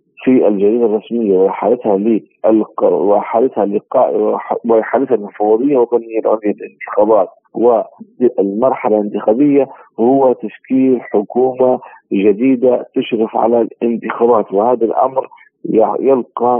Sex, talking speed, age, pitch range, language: male, 75 wpm, 40-59, 105-125 Hz, Arabic